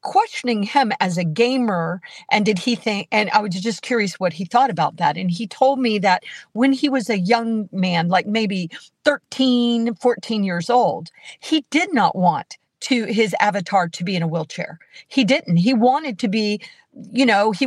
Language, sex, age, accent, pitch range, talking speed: English, female, 40-59, American, 195-255 Hz, 195 wpm